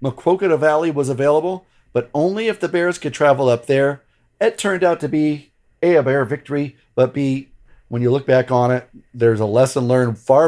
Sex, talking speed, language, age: male, 200 wpm, English, 40-59